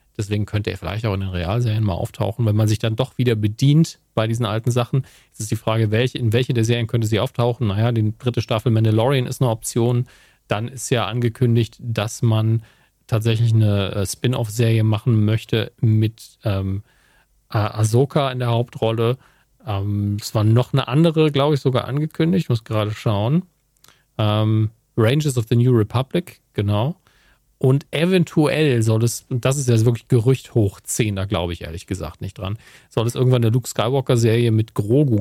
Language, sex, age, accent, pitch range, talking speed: German, male, 40-59, German, 105-125 Hz, 195 wpm